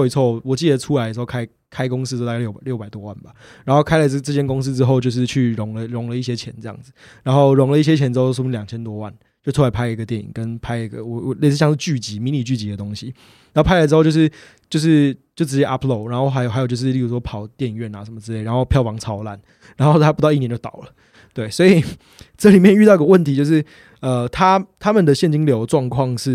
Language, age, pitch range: Chinese, 20-39, 115-145 Hz